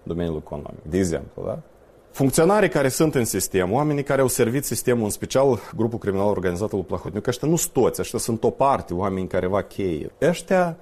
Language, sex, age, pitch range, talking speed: Romanian, male, 30-49, 95-145 Hz, 200 wpm